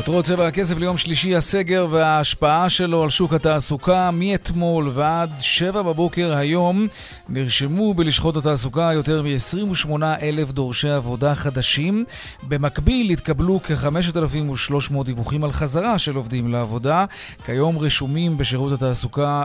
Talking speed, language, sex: 115 wpm, Hebrew, male